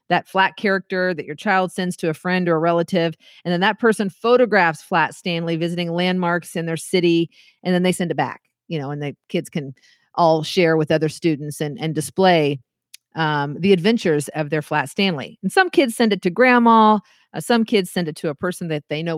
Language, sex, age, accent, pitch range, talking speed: English, female, 40-59, American, 155-205 Hz, 220 wpm